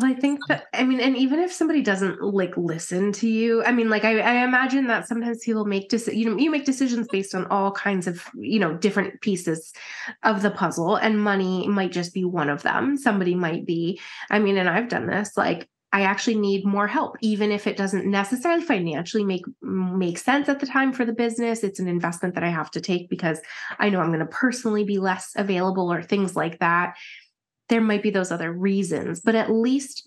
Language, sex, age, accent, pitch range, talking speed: English, female, 20-39, American, 180-235 Hz, 220 wpm